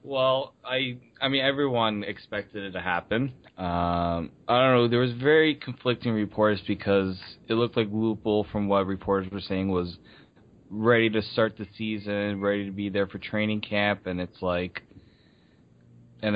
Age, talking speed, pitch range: 20-39, 165 wpm, 95-110 Hz